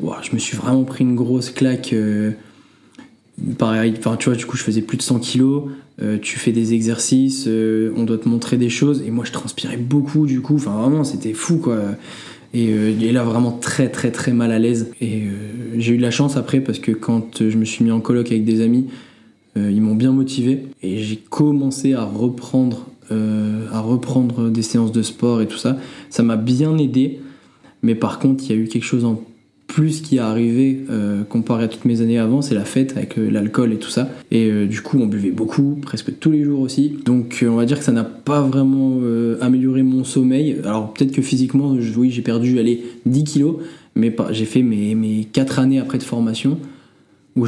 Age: 20-39